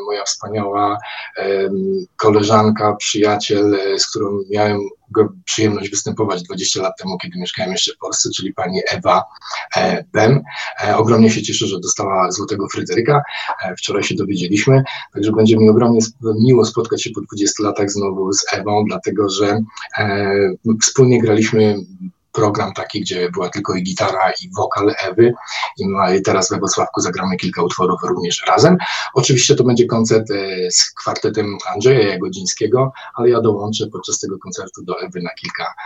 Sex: male